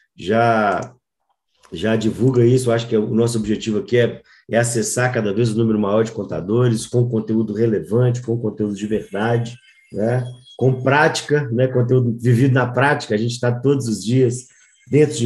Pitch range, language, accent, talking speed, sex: 110-140 Hz, Portuguese, Brazilian, 170 wpm, male